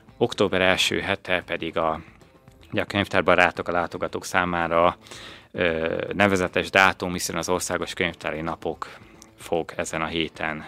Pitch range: 80-95 Hz